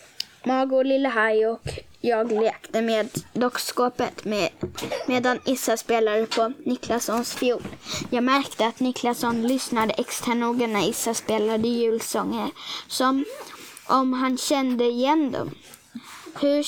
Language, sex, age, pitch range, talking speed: Swedish, female, 20-39, 230-290 Hz, 115 wpm